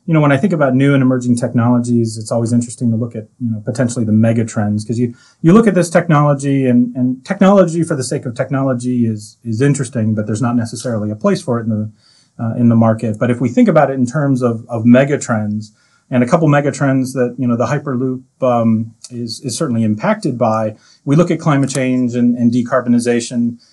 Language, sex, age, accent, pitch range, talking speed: English, male, 30-49, American, 120-140 Hz, 220 wpm